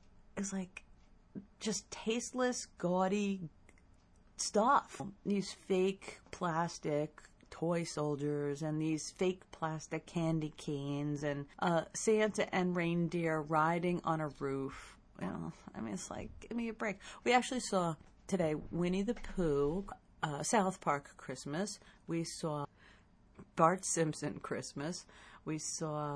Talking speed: 125 wpm